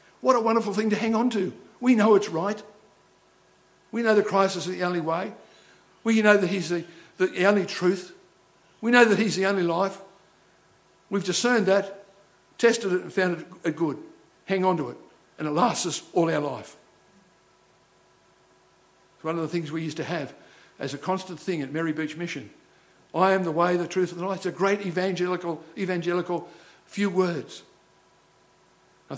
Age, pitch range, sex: 60-79, 160-200 Hz, male